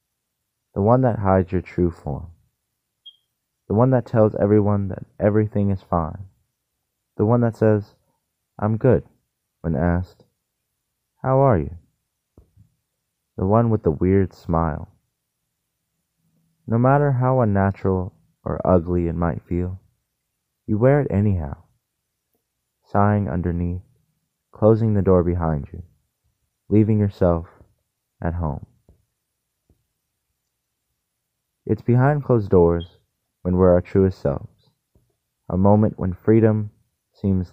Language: English